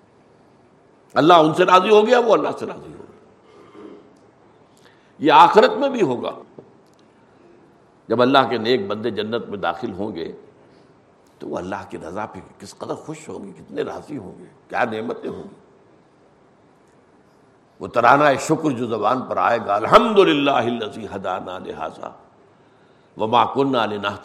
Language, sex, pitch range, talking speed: Urdu, male, 95-150 Hz, 135 wpm